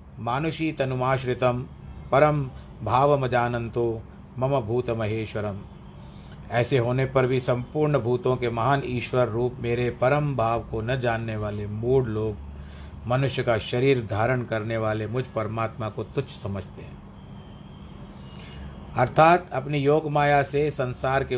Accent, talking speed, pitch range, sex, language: native, 125 wpm, 110-140 Hz, male, Hindi